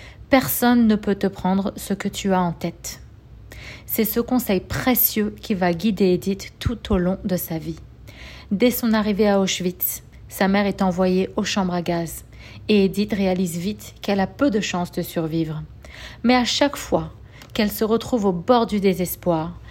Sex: female